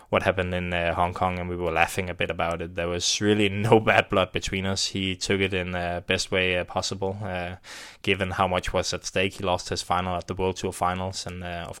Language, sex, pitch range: English, male, 90-100 Hz